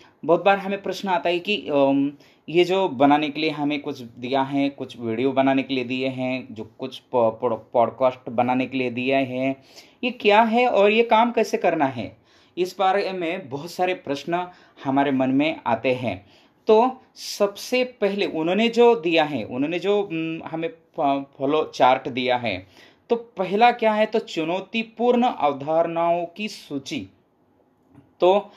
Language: Hindi